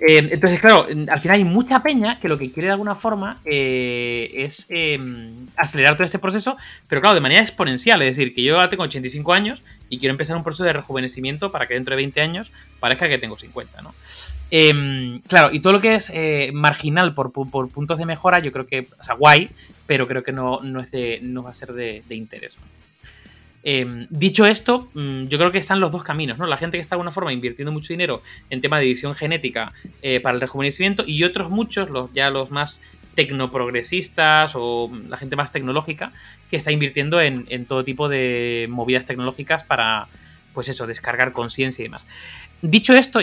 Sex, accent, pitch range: male, Spanish, 125-170 Hz